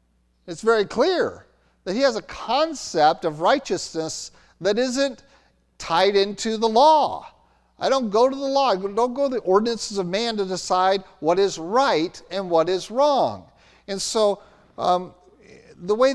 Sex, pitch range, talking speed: male, 155-230 Hz, 165 wpm